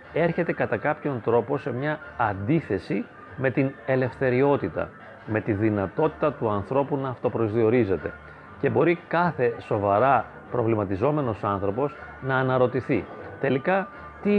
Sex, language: male, Greek